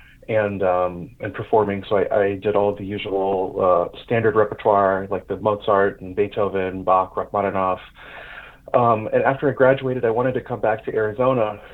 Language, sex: English, male